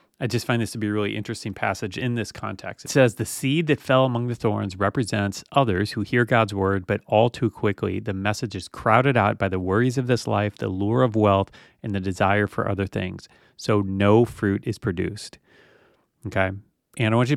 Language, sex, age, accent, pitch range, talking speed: English, male, 30-49, American, 100-120 Hz, 220 wpm